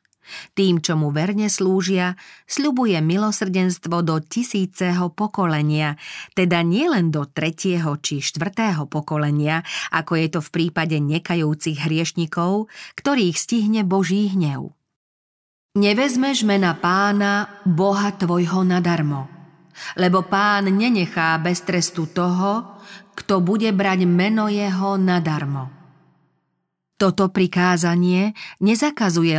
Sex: female